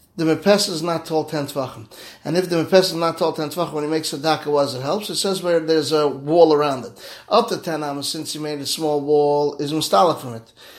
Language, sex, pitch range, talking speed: English, male, 150-185 Hz, 250 wpm